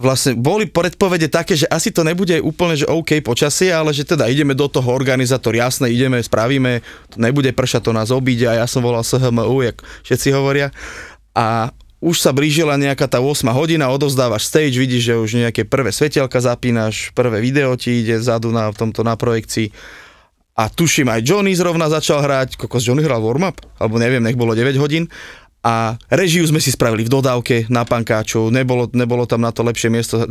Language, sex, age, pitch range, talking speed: Slovak, male, 20-39, 120-150 Hz, 190 wpm